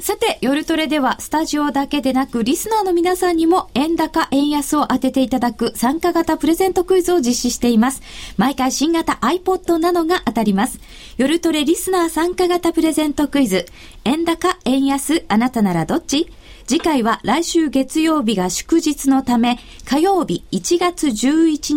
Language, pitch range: Japanese, 230-325 Hz